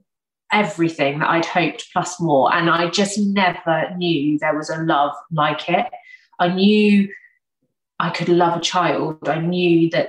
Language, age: English, 30-49